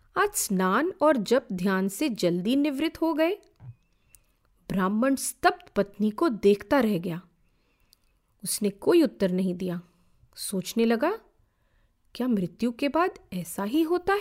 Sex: female